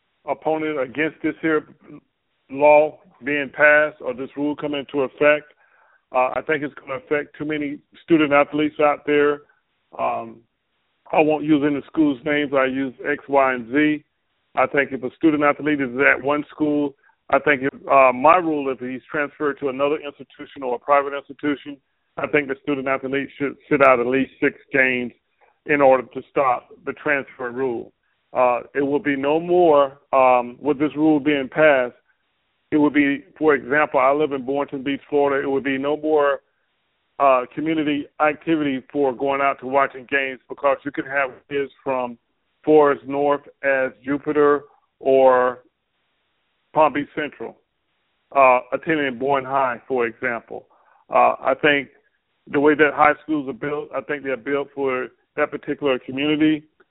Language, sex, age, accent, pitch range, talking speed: English, male, 40-59, American, 135-150 Hz, 165 wpm